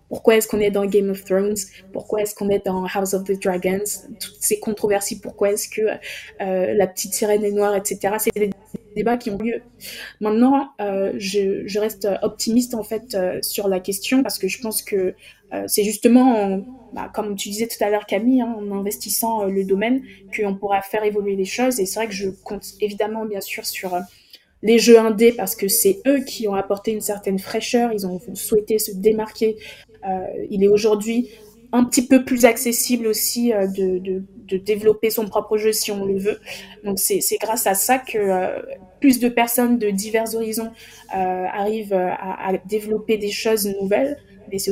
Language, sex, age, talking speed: French, female, 20-39, 205 wpm